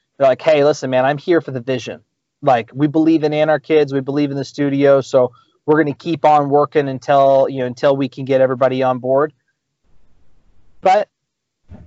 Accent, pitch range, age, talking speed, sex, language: American, 130-160 Hz, 30-49, 195 wpm, male, English